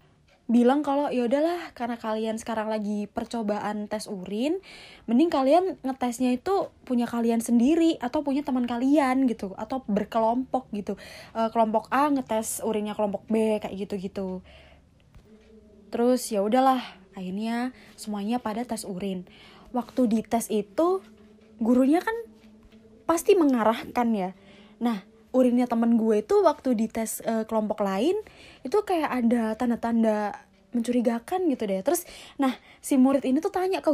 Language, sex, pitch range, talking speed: Indonesian, female, 220-285 Hz, 135 wpm